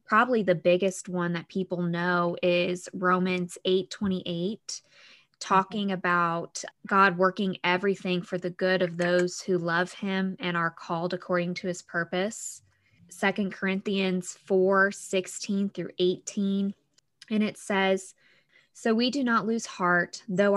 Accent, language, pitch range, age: American, English, 175-195 Hz, 20-39